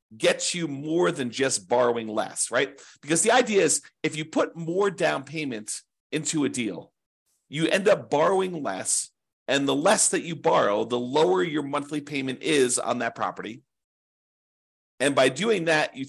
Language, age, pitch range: English, 40-59, 135-185 Hz